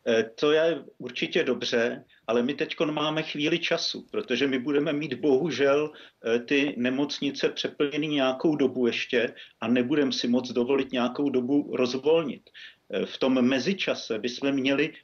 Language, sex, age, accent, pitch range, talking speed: Czech, male, 50-69, native, 130-160 Hz, 135 wpm